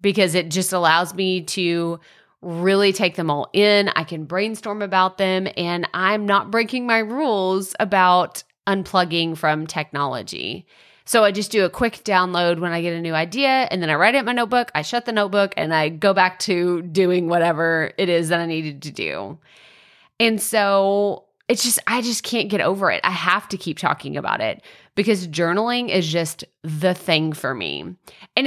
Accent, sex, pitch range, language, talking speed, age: American, female, 170-220 Hz, English, 190 wpm, 30-49